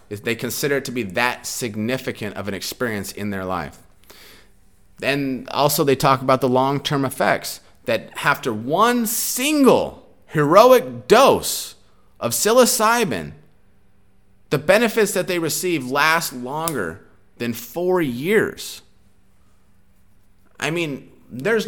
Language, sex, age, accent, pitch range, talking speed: English, male, 30-49, American, 115-175 Hz, 120 wpm